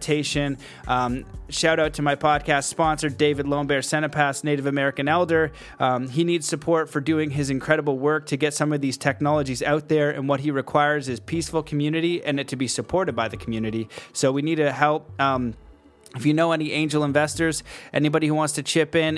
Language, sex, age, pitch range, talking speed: English, male, 30-49, 130-155 Hz, 195 wpm